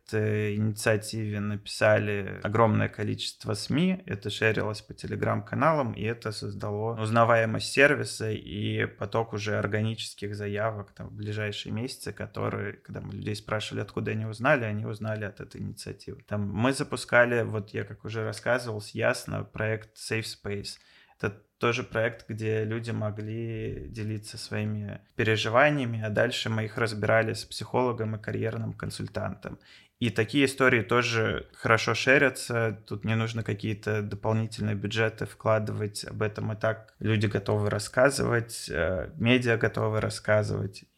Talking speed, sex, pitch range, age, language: 130 wpm, male, 105-115 Hz, 20-39, Russian